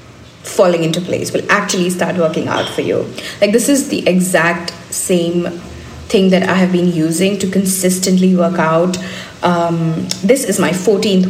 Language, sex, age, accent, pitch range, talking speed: English, female, 20-39, Indian, 165-200 Hz, 165 wpm